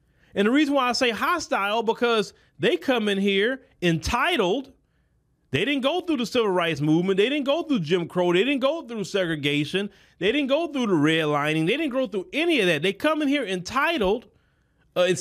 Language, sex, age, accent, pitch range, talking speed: English, male, 30-49, American, 155-235 Hz, 205 wpm